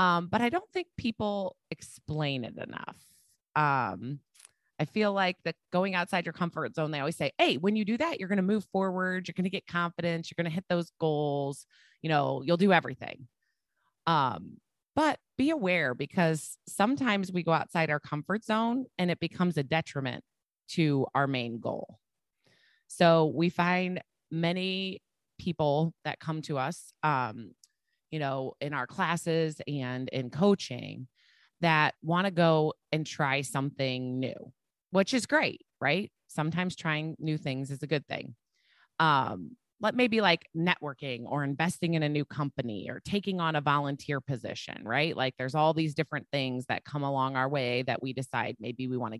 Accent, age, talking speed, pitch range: American, 30-49, 170 wpm, 140-180 Hz